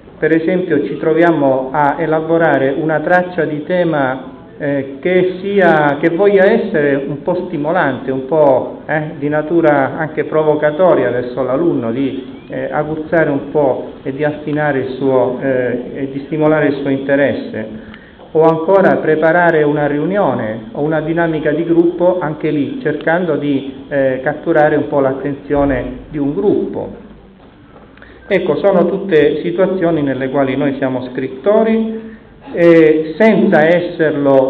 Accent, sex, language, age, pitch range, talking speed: native, male, Italian, 40-59, 135-170 Hz, 125 wpm